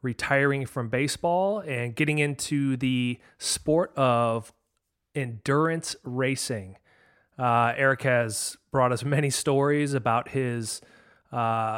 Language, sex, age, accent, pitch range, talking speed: English, male, 30-49, American, 120-145 Hz, 105 wpm